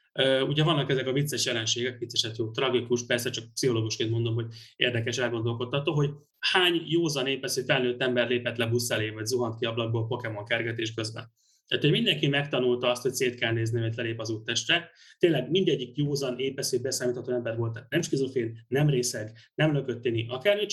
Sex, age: male, 30-49